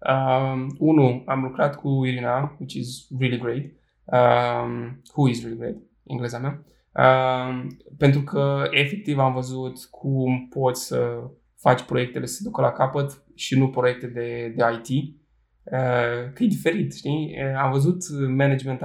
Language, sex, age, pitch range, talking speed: Romanian, male, 20-39, 125-140 Hz, 150 wpm